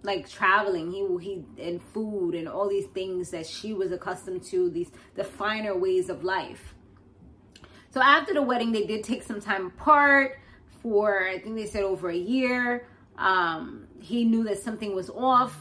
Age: 20-39